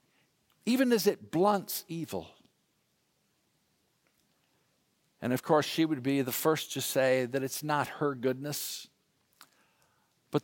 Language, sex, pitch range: English, male, 135-205 Hz